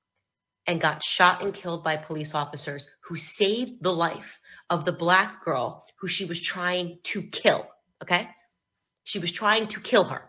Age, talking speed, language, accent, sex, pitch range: 30-49, 170 wpm, English, American, female, 165-200 Hz